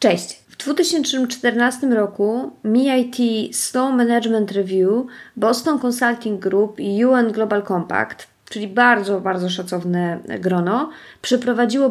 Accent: native